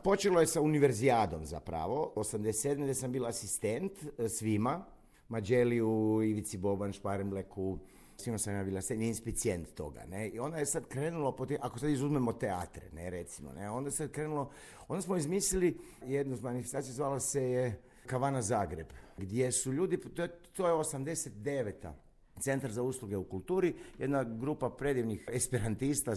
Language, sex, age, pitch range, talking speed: Croatian, male, 50-69, 110-145 Hz, 145 wpm